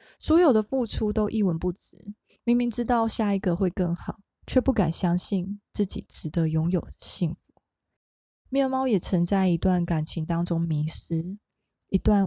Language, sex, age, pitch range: Chinese, female, 20-39, 170-215 Hz